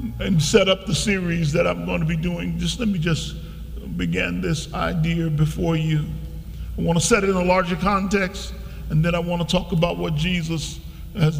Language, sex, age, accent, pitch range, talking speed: English, male, 50-69, American, 150-175 Hz, 205 wpm